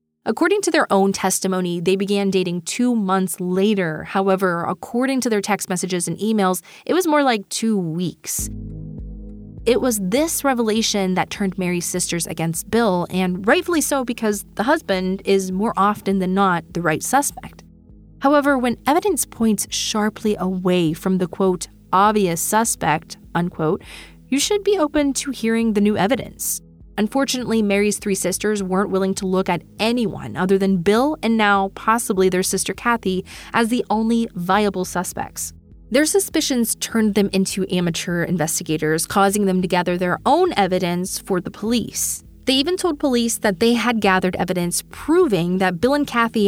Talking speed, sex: 160 wpm, female